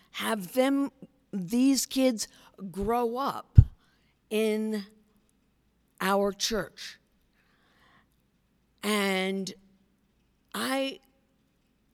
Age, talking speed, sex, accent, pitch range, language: 50-69, 55 wpm, female, American, 195-275 Hz, English